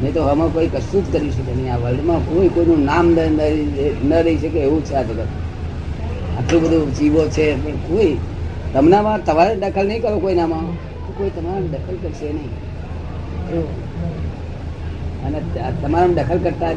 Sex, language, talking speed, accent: female, Gujarati, 50 wpm, native